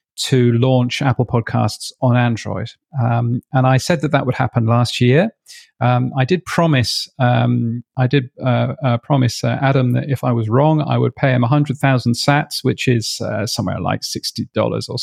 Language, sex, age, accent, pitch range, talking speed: English, male, 40-59, British, 120-135 Hz, 195 wpm